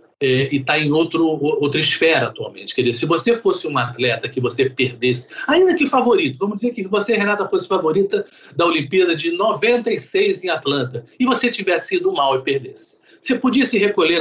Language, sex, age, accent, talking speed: Portuguese, male, 50-69, Brazilian, 190 wpm